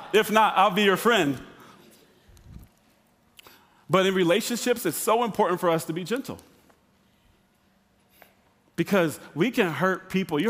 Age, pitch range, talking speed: 40-59, 155-210 Hz, 125 wpm